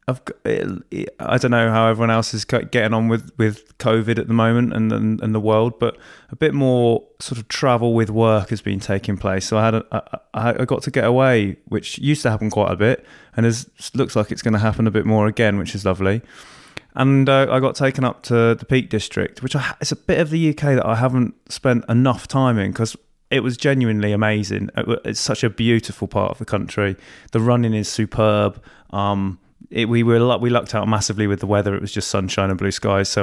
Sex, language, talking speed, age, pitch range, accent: male, English, 230 wpm, 20-39, 105-120 Hz, British